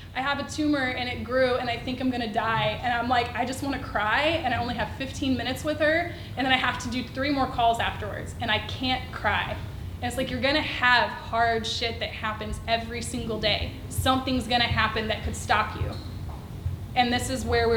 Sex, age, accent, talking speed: female, 20-39, American, 225 wpm